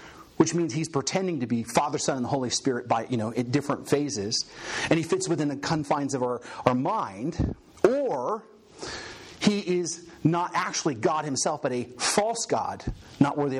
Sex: male